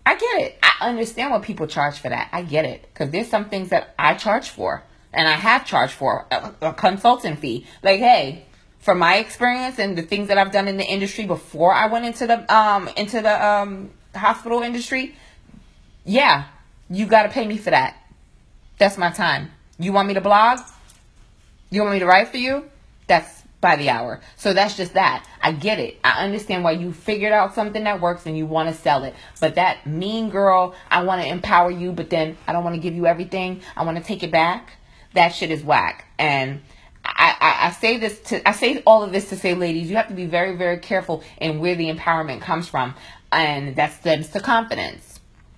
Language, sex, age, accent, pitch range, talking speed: English, female, 20-39, American, 165-210 Hz, 215 wpm